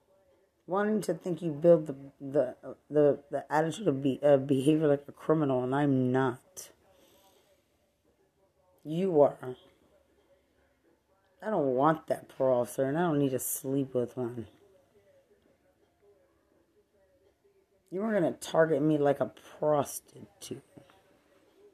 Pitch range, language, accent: 130-170 Hz, English, American